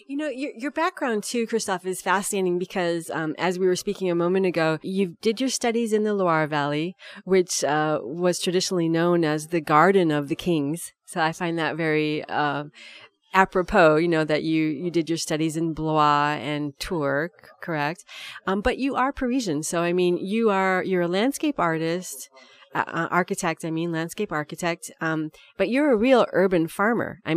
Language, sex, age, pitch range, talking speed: English, female, 30-49, 160-195 Hz, 185 wpm